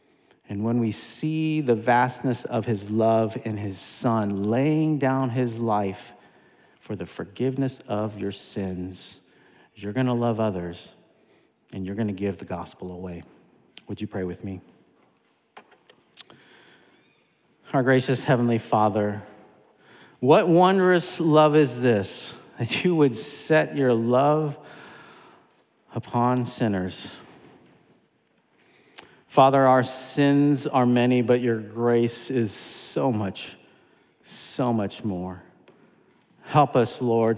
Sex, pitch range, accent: male, 100-130 Hz, American